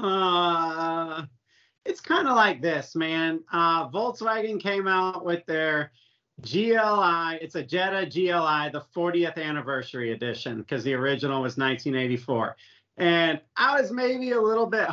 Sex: male